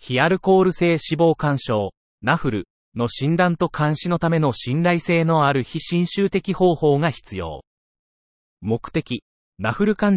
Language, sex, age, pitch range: Japanese, male, 30-49, 125-165 Hz